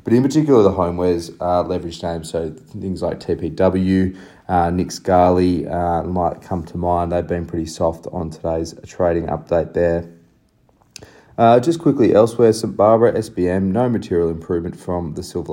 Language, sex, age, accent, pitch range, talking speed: English, male, 30-49, Australian, 85-95 Hz, 160 wpm